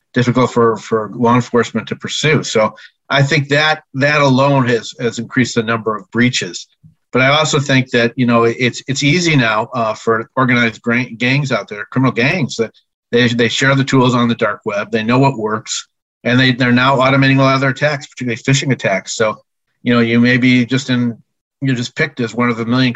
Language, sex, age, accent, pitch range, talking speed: English, male, 40-59, American, 115-130 Hz, 215 wpm